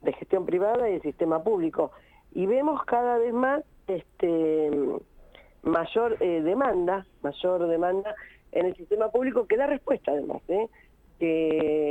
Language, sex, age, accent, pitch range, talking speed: Spanish, female, 40-59, Argentinian, 155-220 Hz, 140 wpm